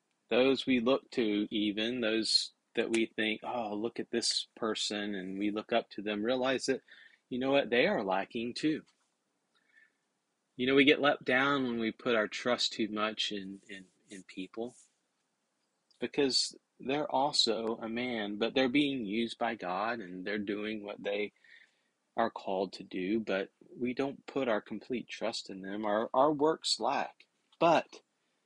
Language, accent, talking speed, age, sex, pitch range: English, American, 165 wpm, 30-49, male, 105-130 Hz